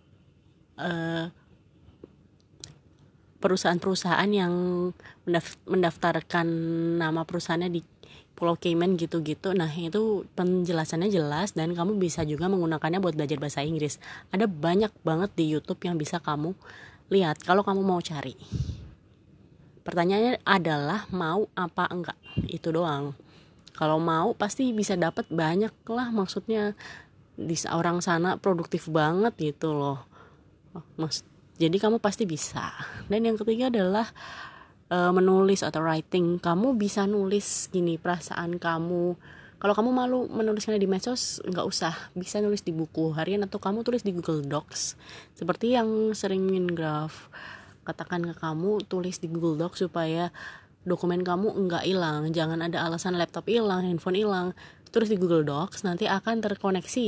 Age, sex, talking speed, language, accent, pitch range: 20-39, female, 135 wpm, Indonesian, native, 165-195 Hz